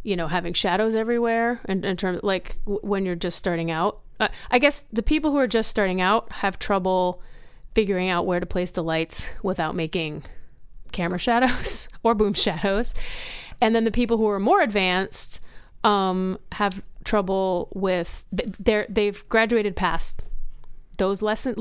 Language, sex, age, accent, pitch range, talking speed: English, female, 30-49, American, 175-215 Hz, 165 wpm